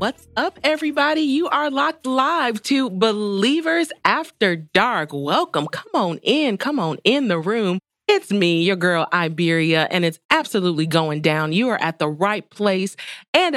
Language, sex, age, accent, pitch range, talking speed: English, female, 30-49, American, 170-240 Hz, 165 wpm